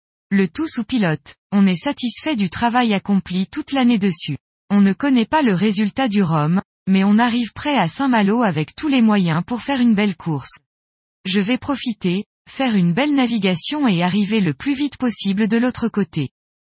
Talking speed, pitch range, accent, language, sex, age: 185 wpm, 185-245 Hz, French, French, female, 20-39